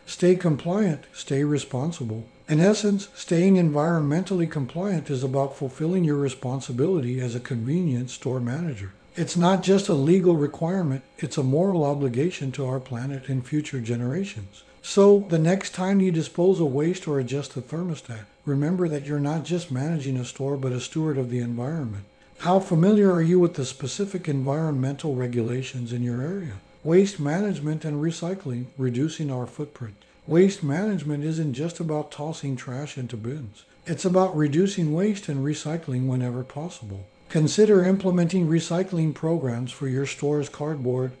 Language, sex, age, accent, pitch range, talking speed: English, male, 60-79, American, 130-170 Hz, 155 wpm